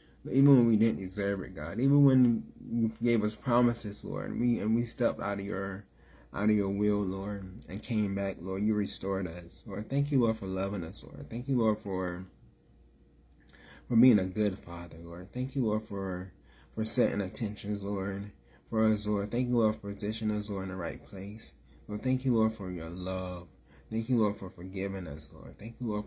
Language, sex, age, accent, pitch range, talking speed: English, male, 20-39, American, 90-110 Hz, 210 wpm